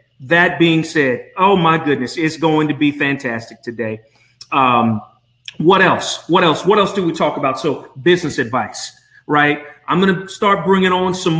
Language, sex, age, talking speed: English, male, 40-59, 175 wpm